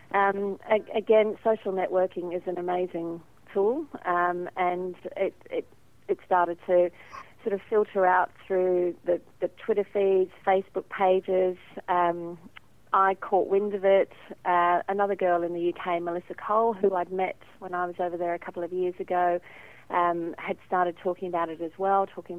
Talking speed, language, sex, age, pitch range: 165 wpm, English, female, 40-59, 175-195 Hz